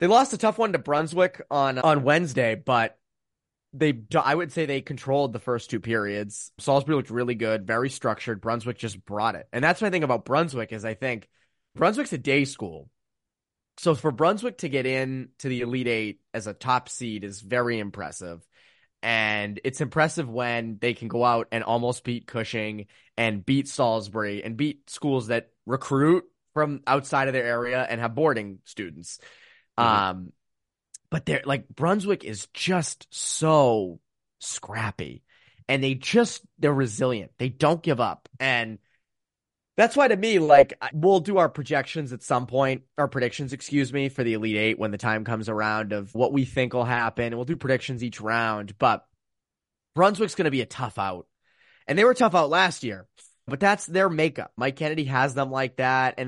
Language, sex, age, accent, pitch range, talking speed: English, male, 20-39, American, 115-145 Hz, 185 wpm